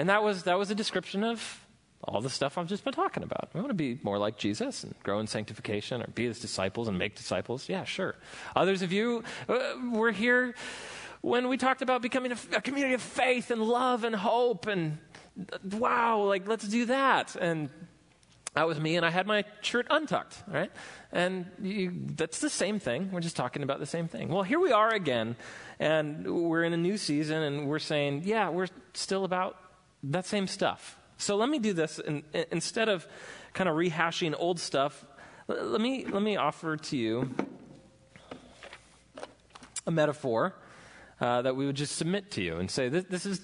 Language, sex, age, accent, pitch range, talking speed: English, male, 30-49, American, 130-205 Hz, 200 wpm